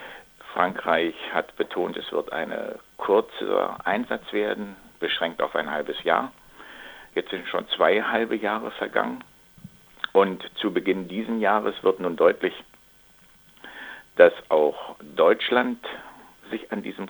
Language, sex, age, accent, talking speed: German, male, 60-79, German, 125 wpm